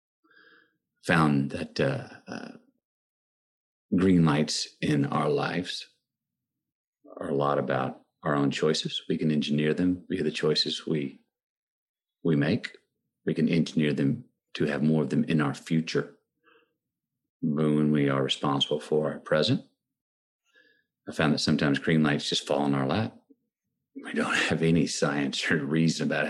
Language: English